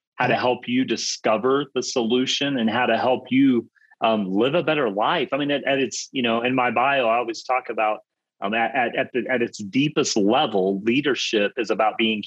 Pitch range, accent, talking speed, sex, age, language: 105-135 Hz, American, 210 wpm, male, 30-49, English